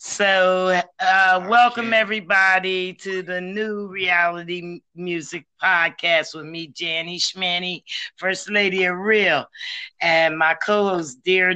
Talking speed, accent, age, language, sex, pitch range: 115 wpm, American, 40-59, English, male, 165-195 Hz